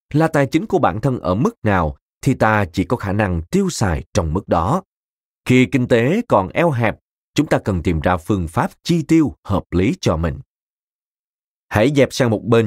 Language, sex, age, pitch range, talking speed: Vietnamese, male, 20-39, 90-135 Hz, 210 wpm